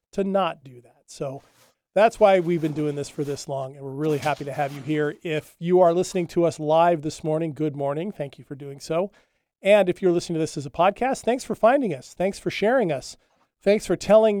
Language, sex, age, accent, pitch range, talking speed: English, male, 40-59, American, 145-185 Hz, 240 wpm